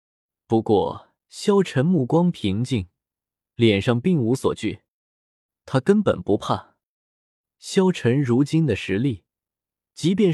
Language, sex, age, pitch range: Chinese, male, 20-39, 115-170 Hz